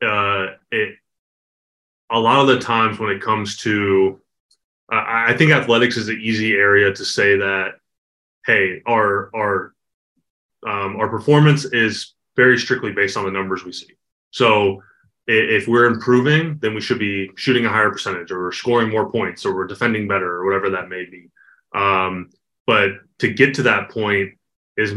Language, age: English, 20-39